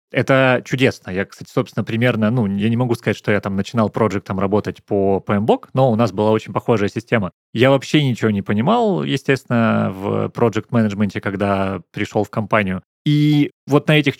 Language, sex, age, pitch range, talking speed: Russian, male, 20-39, 105-130 Hz, 180 wpm